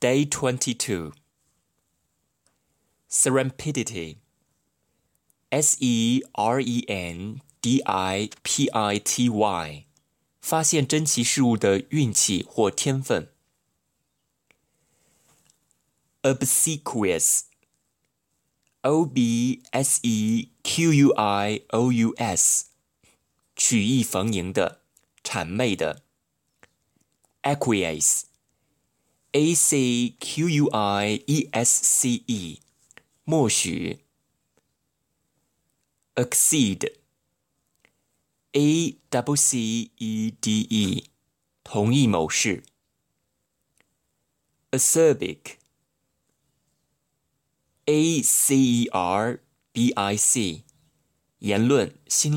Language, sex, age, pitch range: Chinese, male, 20-39, 110-140 Hz